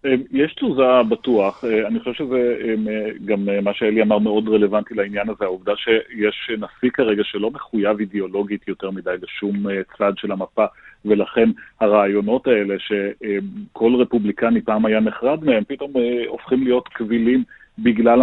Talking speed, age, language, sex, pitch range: 135 wpm, 40-59, Hebrew, male, 105-130 Hz